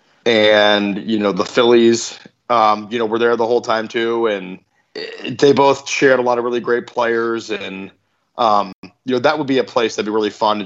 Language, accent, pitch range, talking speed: English, American, 110-125 Hz, 215 wpm